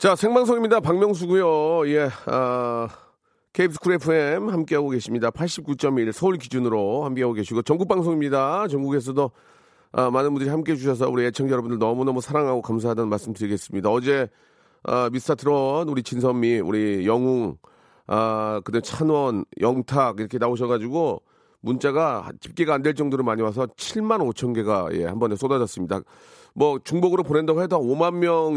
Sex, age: male, 40-59